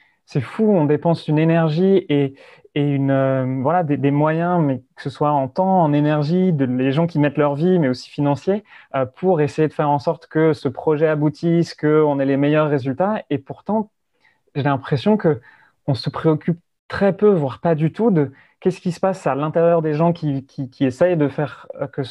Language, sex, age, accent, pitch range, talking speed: French, male, 30-49, French, 135-165 Hz, 210 wpm